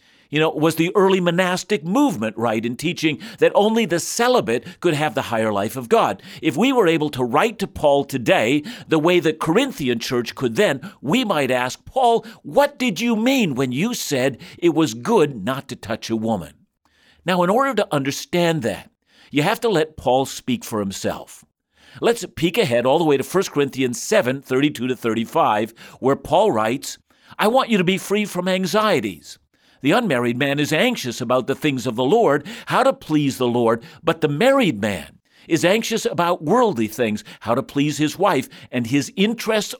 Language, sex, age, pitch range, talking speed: English, male, 50-69, 130-205 Hz, 190 wpm